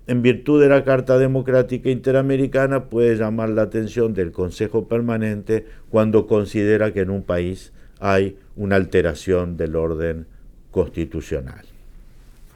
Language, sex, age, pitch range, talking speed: English, male, 50-69, 95-125 Hz, 125 wpm